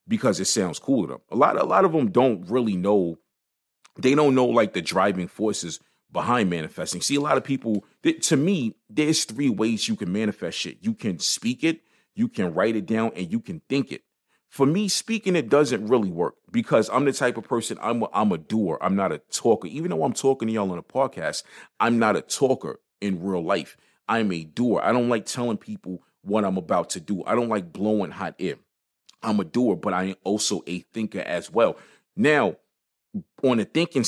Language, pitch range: English, 100-145 Hz